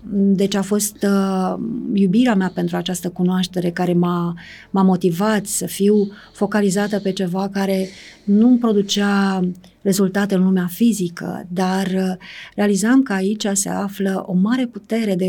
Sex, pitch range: female, 185-210 Hz